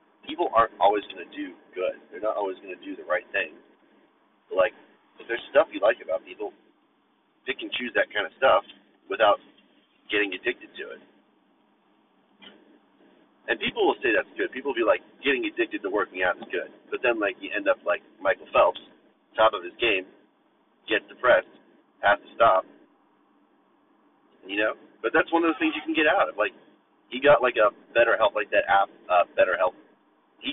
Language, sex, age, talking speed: English, male, 30-49, 190 wpm